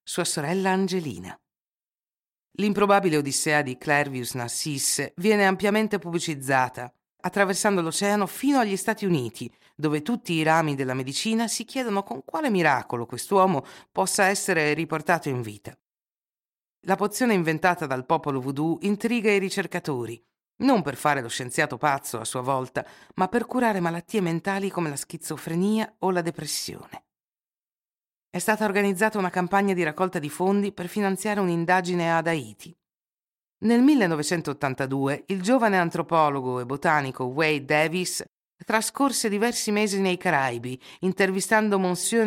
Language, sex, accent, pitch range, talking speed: Italian, female, native, 145-200 Hz, 130 wpm